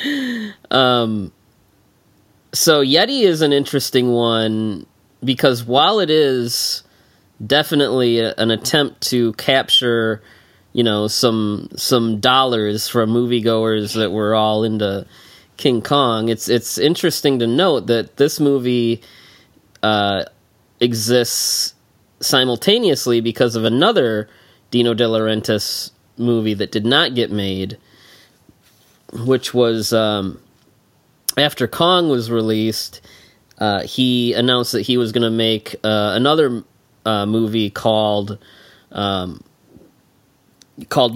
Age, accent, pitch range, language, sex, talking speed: 20-39, American, 110-125 Hz, English, male, 110 wpm